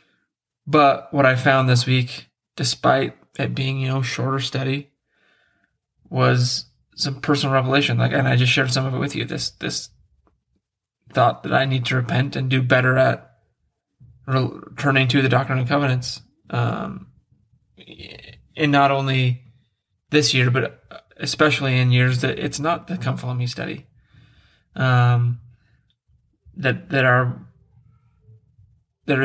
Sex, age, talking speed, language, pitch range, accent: male, 20-39, 140 wpm, English, 120-135 Hz, American